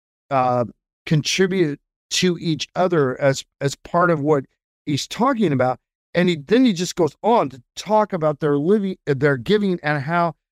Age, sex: 50-69, male